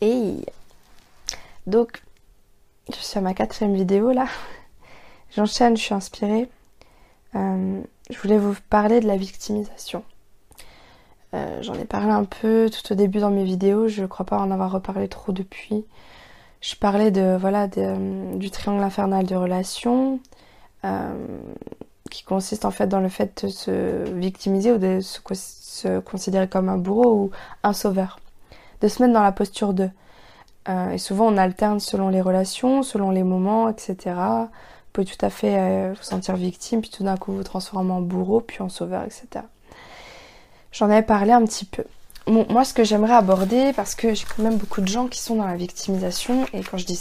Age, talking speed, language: 20-39, 185 wpm, French